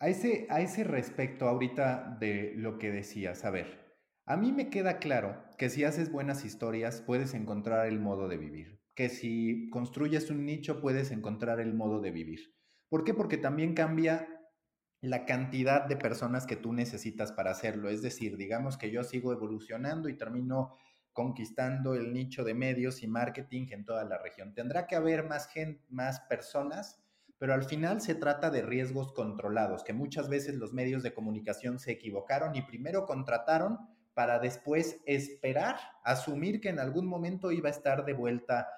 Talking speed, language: 175 wpm, Spanish